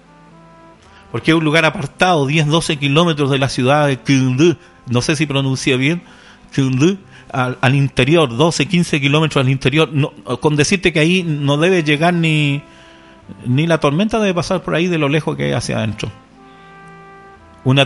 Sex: male